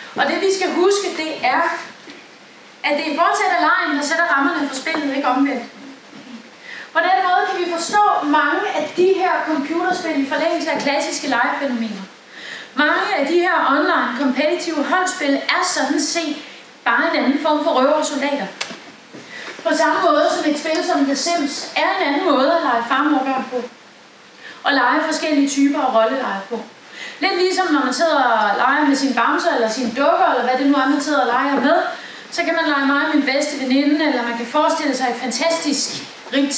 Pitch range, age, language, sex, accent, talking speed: 270-335 Hz, 30-49, Danish, female, native, 190 wpm